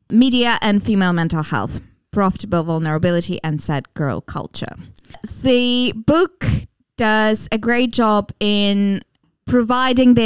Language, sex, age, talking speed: Swedish, female, 20-39, 115 wpm